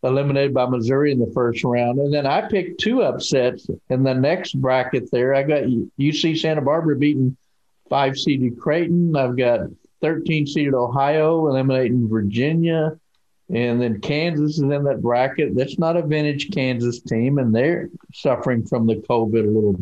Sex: male